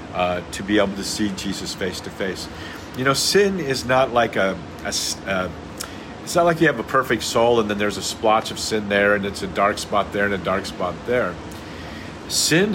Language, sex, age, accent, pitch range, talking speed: English, male, 50-69, American, 90-110 Hz, 215 wpm